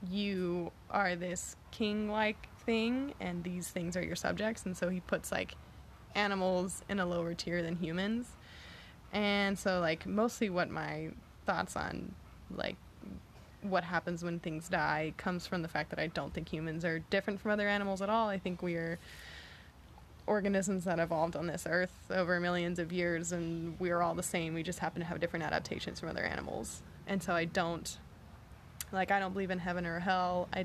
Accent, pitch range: American, 165-190 Hz